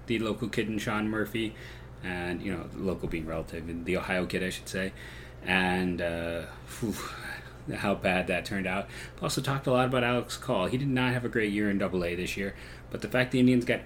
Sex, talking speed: male, 220 wpm